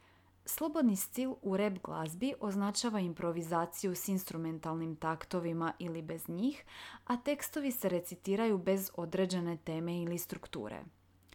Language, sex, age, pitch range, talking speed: Croatian, female, 30-49, 165-220 Hz, 115 wpm